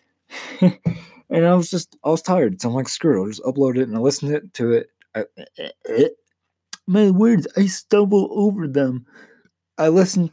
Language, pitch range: English, 110-150 Hz